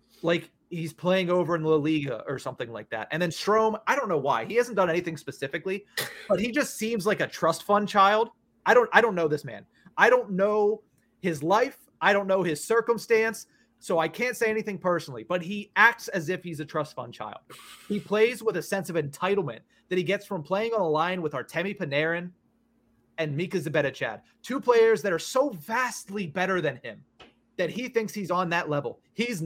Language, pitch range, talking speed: English, 170-220 Hz, 210 wpm